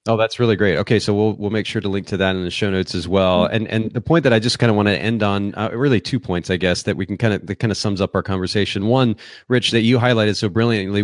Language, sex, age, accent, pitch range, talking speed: English, male, 30-49, American, 95-115 Hz, 315 wpm